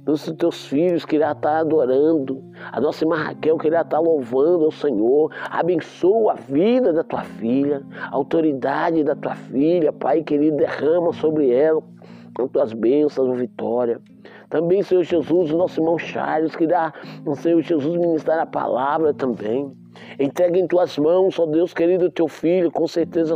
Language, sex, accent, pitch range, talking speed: Portuguese, male, Brazilian, 140-165 Hz, 160 wpm